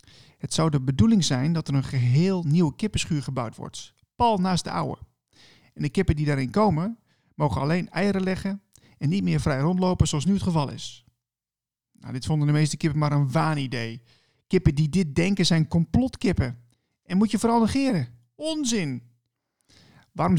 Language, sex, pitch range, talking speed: Dutch, male, 135-190 Hz, 175 wpm